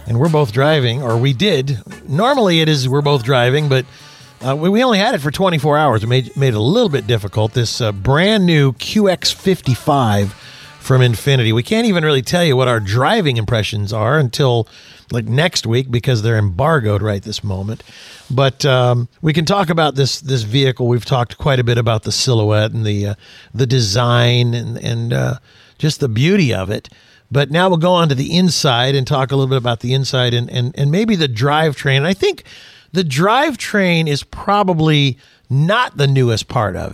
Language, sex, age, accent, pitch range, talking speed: English, male, 50-69, American, 120-180 Hz, 200 wpm